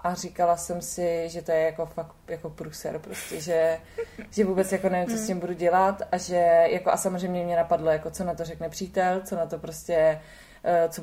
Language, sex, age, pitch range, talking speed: Czech, female, 20-39, 170-195 Hz, 210 wpm